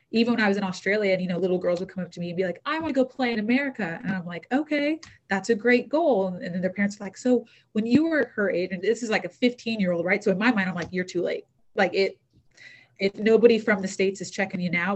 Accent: American